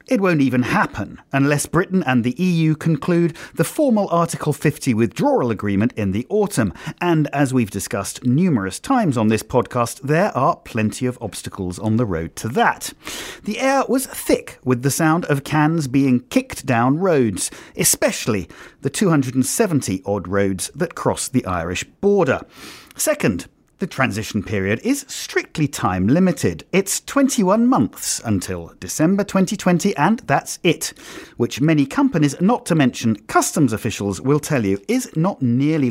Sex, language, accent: male, English, British